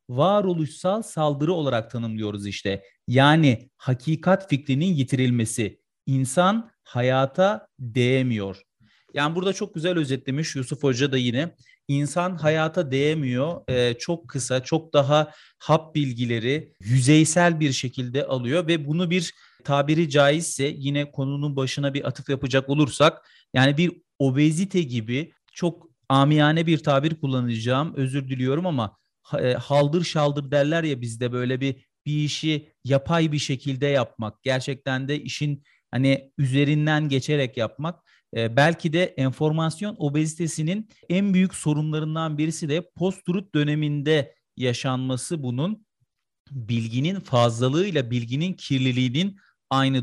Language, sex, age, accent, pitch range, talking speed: Turkish, male, 40-59, native, 130-160 Hz, 120 wpm